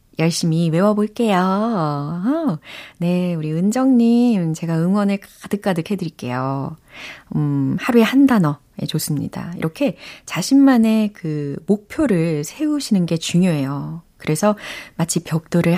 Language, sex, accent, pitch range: Korean, female, native, 155-225 Hz